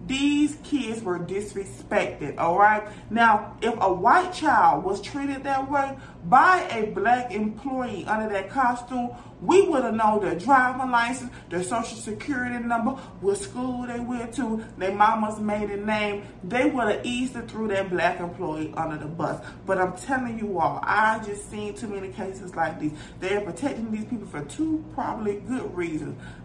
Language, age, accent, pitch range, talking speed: English, 30-49, American, 200-270 Hz, 170 wpm